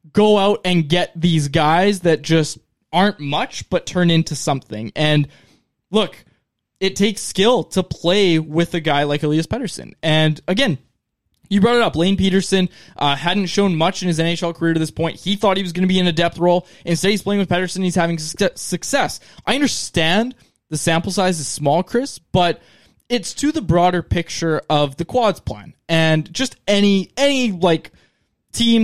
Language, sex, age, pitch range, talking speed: English, male, 20-39, 155-200 Hz, 185 wpm